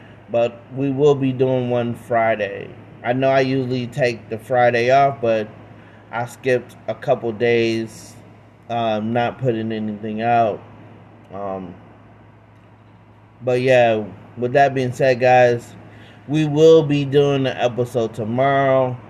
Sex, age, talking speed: male, 30-49, 130 wpm